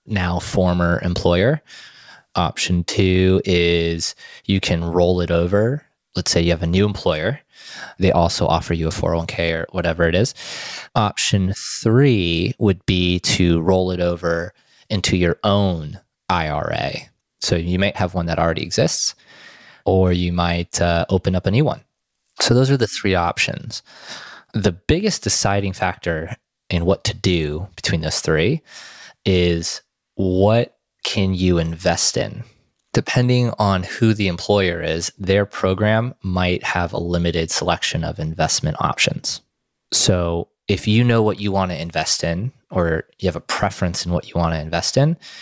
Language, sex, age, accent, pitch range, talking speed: English, male, 20-39, American, 85-100 Hz, 155 wpm